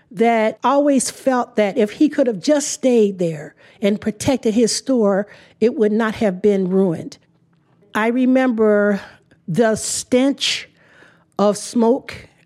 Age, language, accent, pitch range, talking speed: 50-69, English, American, 190-240 Hz, 130 wpm